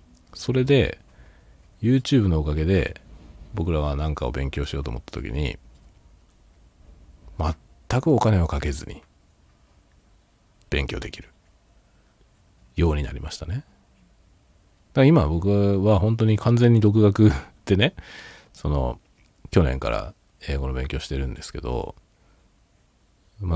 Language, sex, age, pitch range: Japanese, male, 40-59, 70-100 Hz